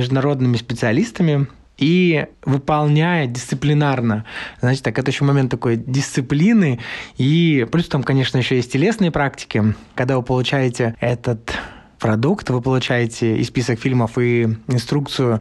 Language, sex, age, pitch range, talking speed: Russian, male, 20-39, 120-150 Hz, 125 wpm